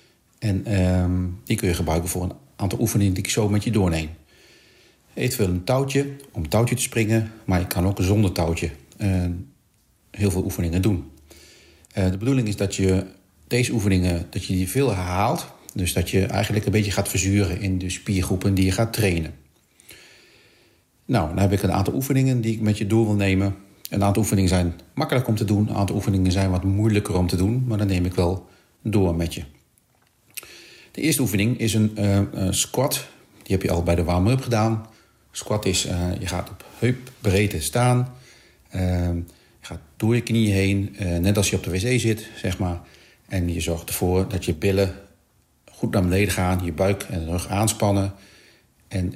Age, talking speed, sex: 40-59, 190 wpm, male